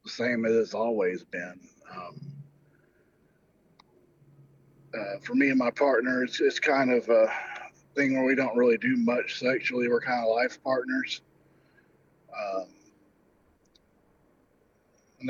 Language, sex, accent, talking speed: Danish, male, American, 130 wpm